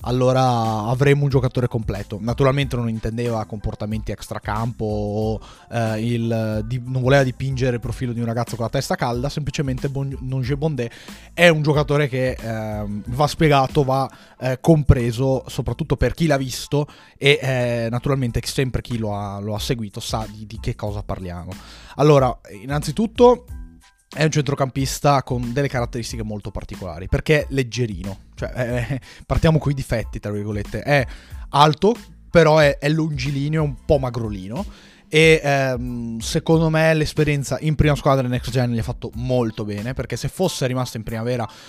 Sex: male